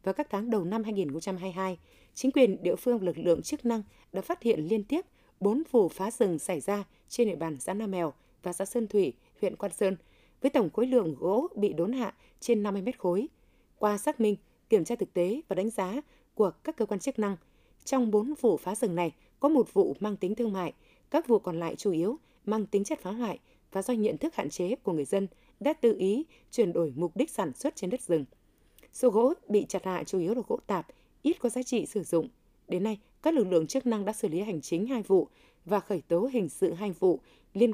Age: 20-39